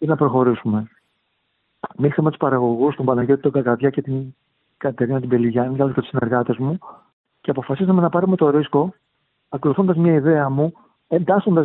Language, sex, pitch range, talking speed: Greek, male, 140-185 Hz, 155 wpm